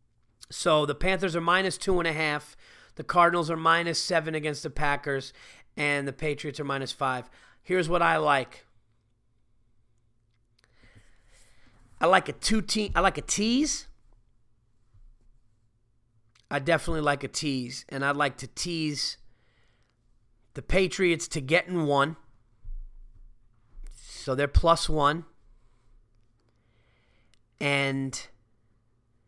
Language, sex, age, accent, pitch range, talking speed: English, male, 30-49, American, 115-155 Hz, 115 wpm